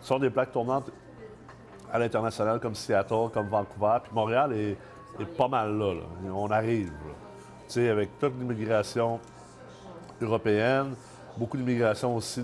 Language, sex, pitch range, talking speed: French, male, 100-120 Hz, 140 wpm